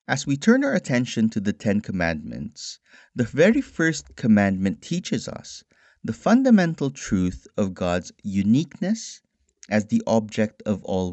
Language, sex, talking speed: English, male, 140 wpm